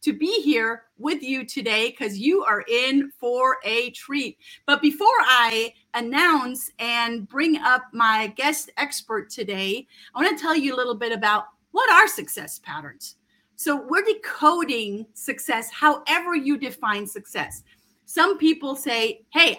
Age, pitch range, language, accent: 40-59, 235-305 Hz, English, American